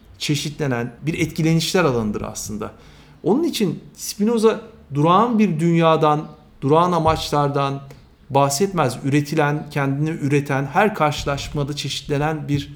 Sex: male